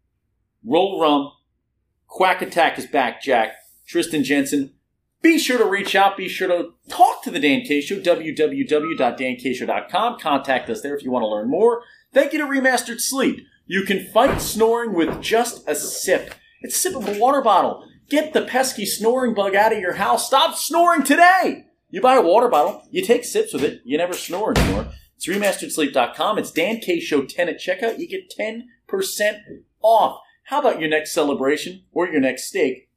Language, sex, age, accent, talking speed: English, male, 40-59, American, 185 wpm